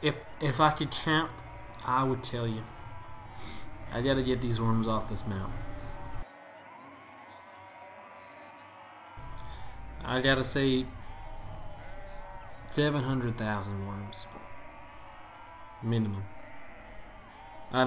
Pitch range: 110-130 Hz